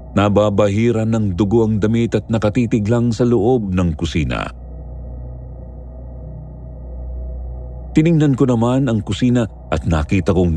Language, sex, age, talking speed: Filipino, male, 50-69, 115 wpm